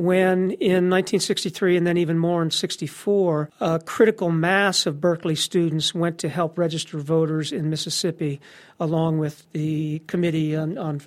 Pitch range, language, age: 165-195 Hz, English, 40-59